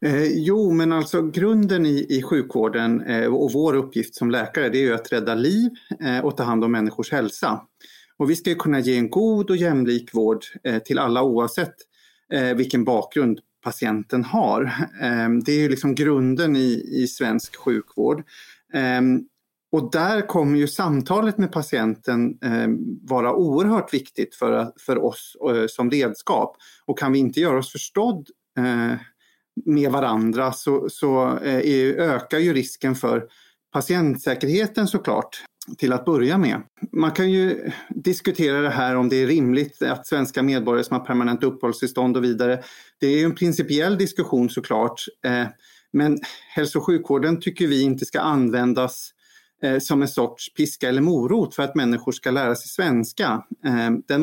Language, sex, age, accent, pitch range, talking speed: Swedish, male, 30-49, native, 125-165 Hz, 160 wpm